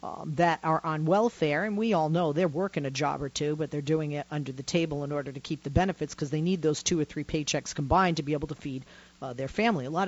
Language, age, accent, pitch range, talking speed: English, 40-59, American, 140-180 Hz, 280 wpm